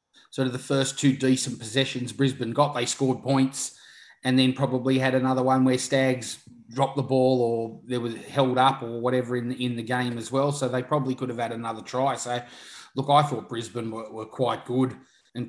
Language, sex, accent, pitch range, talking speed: English, male, Australian, 120-130 Hz, 215 wpm